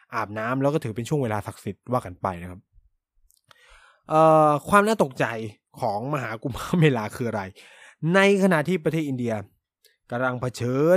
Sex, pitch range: male, 115-160 Hz